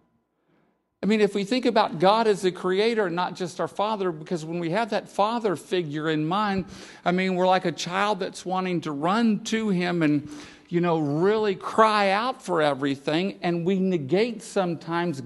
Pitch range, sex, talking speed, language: 130-195 Hz, male, 190 wpm, English